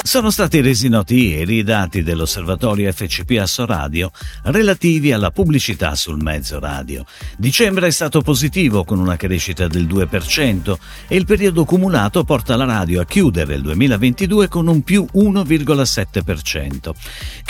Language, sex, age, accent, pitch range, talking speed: Italian, male, 50-69, native, 90-150 Hz, 140 wpm